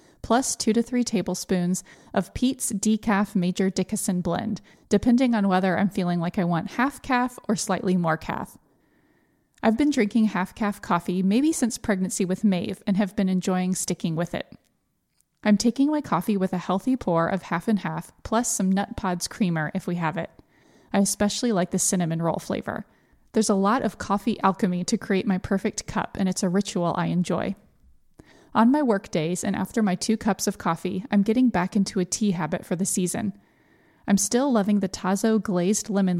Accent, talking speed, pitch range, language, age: American, 190 wpm, 185-220 Hz, English, 20-39